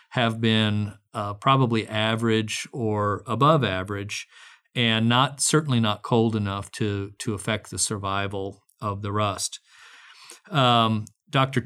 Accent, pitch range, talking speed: American, 105-120 Hz, 125 wpm